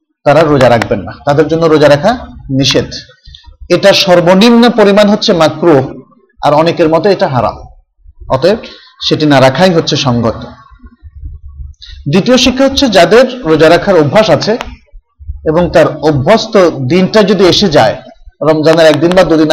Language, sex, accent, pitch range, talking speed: Bengali, male, native, 145-205 Hz, 135 wpm